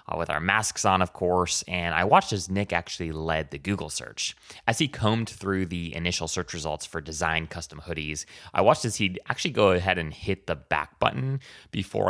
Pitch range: 85-130 Hz